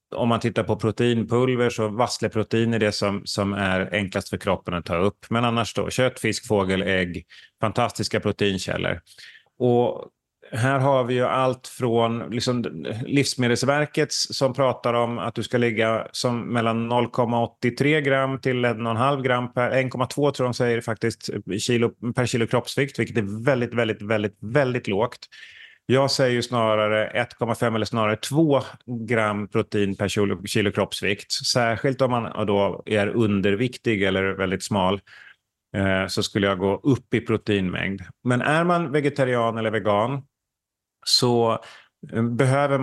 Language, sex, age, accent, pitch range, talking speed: Swedish, male, 30-49, native, 105-125 Hz, 145 wpm